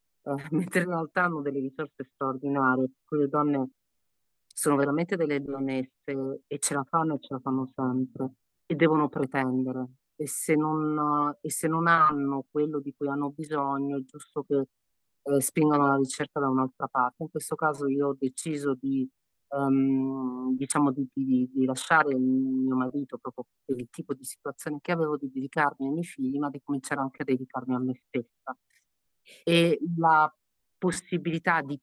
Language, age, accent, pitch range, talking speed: Italian, 30-49, native, 135-160 Hz, 170 wpm